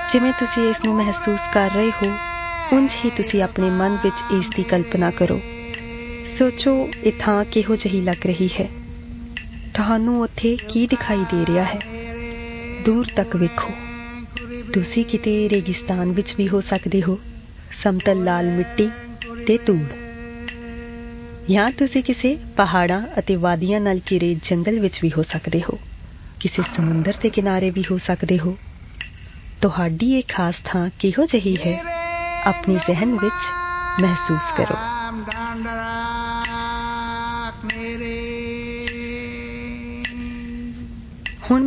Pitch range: 175-235 Hz